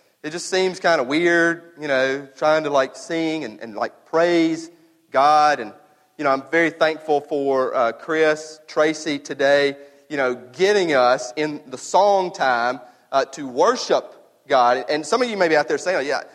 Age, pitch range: 40-59, 130-175 Hz